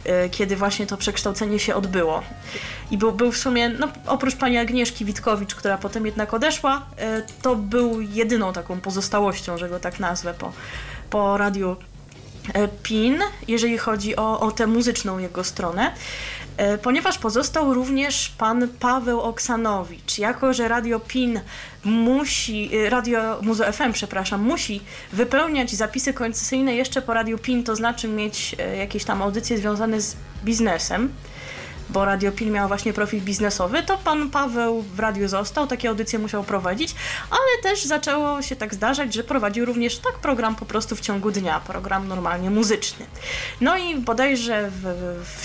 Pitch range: 200-250 Hz